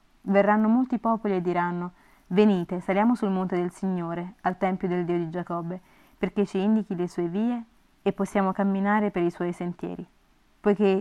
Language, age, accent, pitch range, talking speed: Italian, 30-49, native, 180-205 Hz, 170 wpm